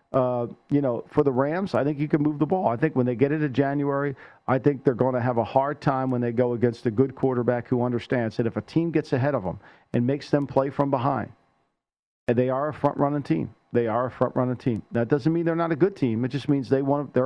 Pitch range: 130-155 Hz